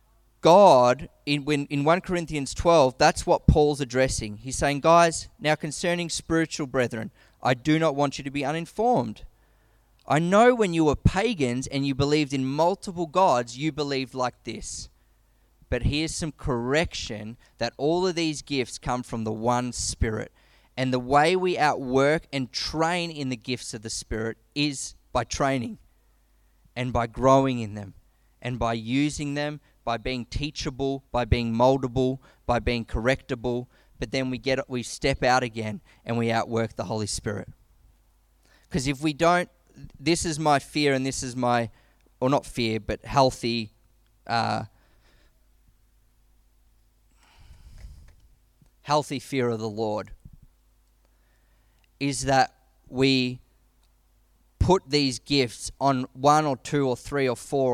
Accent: Australian